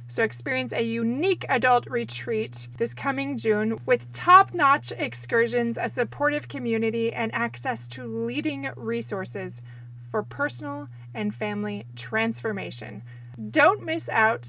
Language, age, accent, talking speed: English, 30-49, American, 115 wpm